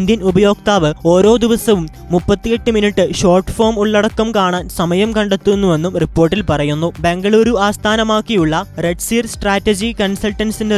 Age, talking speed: 20-39, 110 wpm